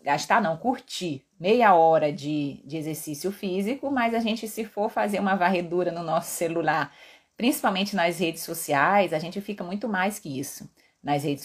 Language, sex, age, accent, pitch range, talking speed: Portuguese, female, 30-49, Brazilian, 155-195 Hz, 175 wpm